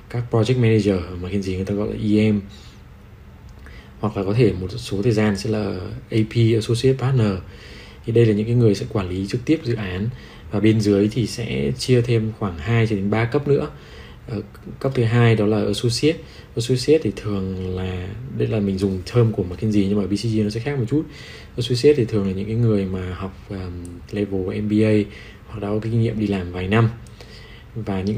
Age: 20-39